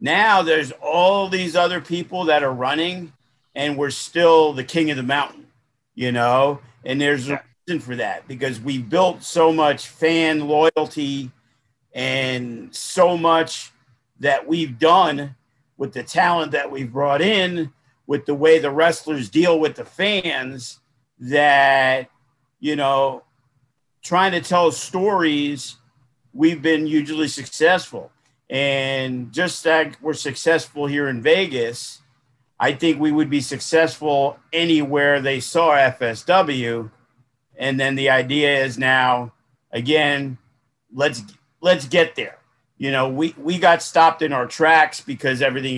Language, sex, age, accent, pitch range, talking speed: English, male, 50-69, American, 130-160 Hz, 140 wpm